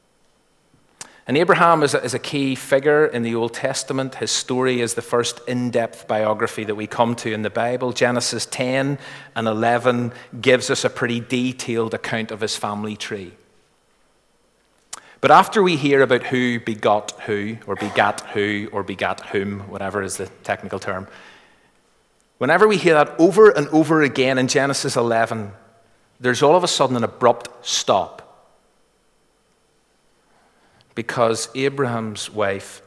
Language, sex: English, male